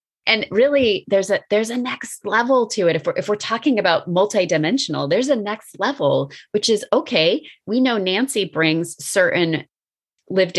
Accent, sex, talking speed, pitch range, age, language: American, female, 170 wpm, 155-205 Hz, 30-49, English